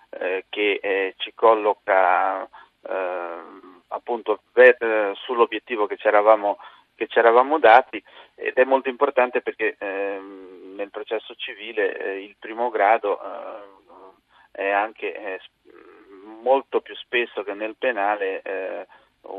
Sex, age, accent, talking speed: male, 30-49, native, 120 wpm